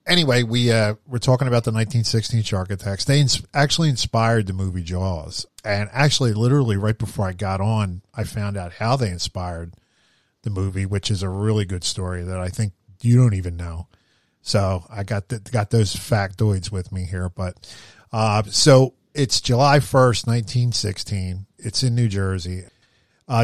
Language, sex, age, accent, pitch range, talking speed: English, male, 40-59, American, 95-120 Hz, 175 wpm